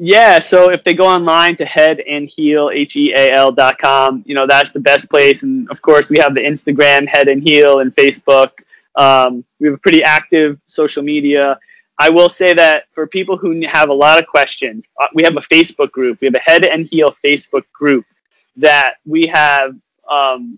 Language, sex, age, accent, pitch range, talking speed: English, male, 20-39, American, 135-160 Hz, 185 wpm